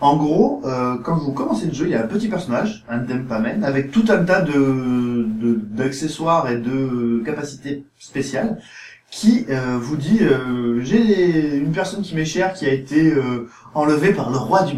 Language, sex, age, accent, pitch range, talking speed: French, male, 30-49, French, 125-200 Hz, 190 wpm